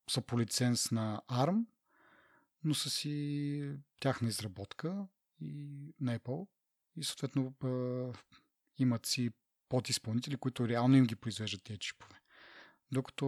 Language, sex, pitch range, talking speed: Bulgarian, male, 115-135 Hz, 120 wpm